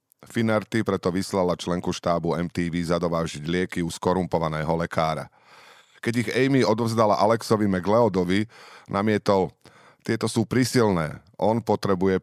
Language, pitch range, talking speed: Slovak, 85-115 Hz, 115 wpm